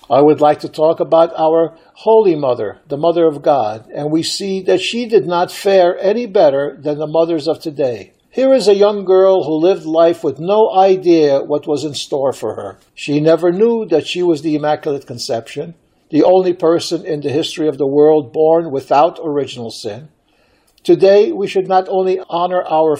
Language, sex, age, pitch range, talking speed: Ukrainian, male, 60-79, 150-185 Hz, 195 wpm